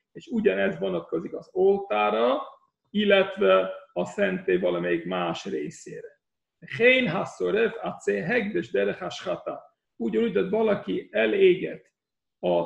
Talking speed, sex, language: 75 wpm, male, Hungarian